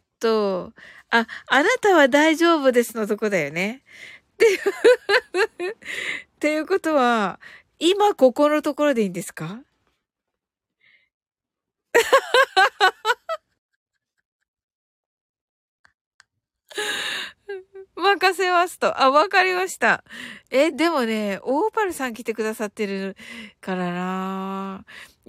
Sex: female